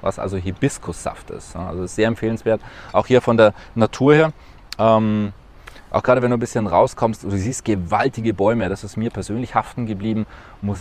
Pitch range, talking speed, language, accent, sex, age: 90-110 Hz, 185 wpm, German, German, male, 20-39